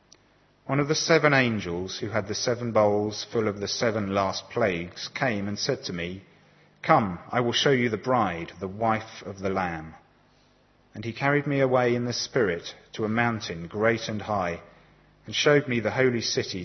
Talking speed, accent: 190 wpm, British